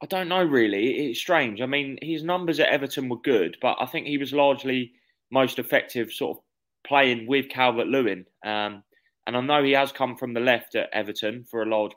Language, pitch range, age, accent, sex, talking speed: English, 110-135 Hz, 20-39, British, male, 215 wpm